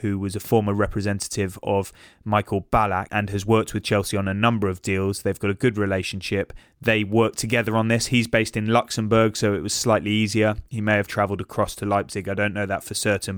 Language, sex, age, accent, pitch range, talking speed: English, male, 20-39, British, 100-110 Hz, 225 wpm